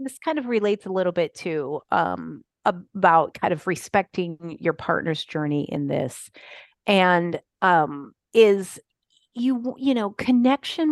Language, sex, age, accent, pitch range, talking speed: English, female, 30-49, American, 175-235 Hz, 135 wpm